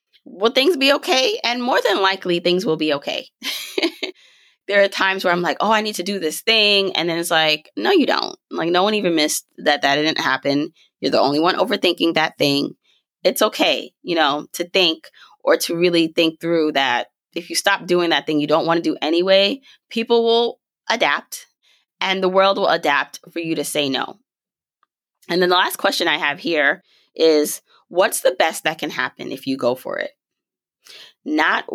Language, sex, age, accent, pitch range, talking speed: English, female, 20-39, American, 150-195 Hz, 200 wpm